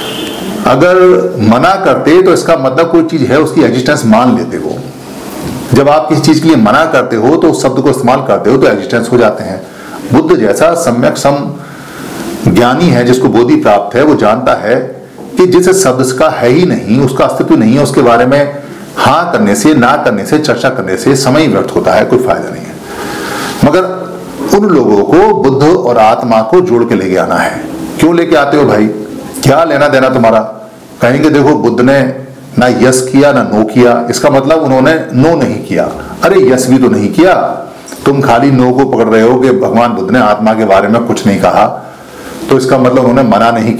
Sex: male